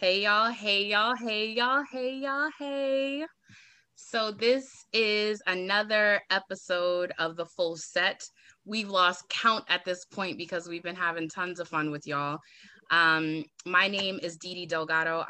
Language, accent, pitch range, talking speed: English, American, 165-210 Hz, 155 wpm